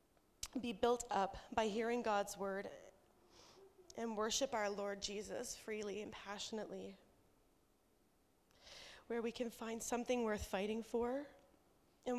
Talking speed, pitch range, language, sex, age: 120 wpm, 200-230 Hz, English, female, 20-39